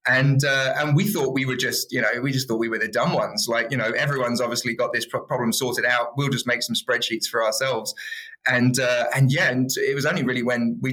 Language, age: English, 20-39